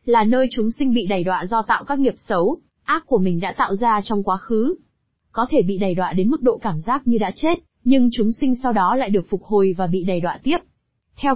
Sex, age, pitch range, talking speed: female, 20-39, 200-255 Hz, 260 wpm